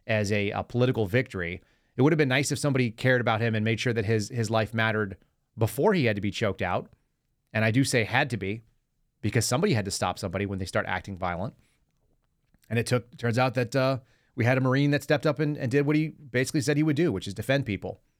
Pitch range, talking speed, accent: 105-130 Hz, 250 wpm, American